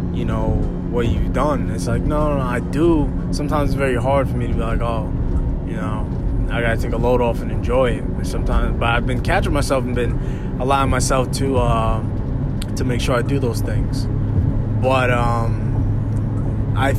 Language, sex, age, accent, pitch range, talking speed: English, male, 20-39, American, 115-125 Hz, 195 wpm